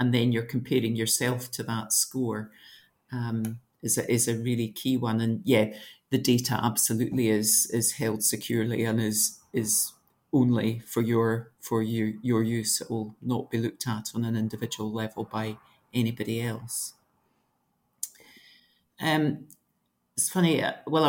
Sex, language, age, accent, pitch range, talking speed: male, English, 50-69, British, 115-135 Hz, 140 wpm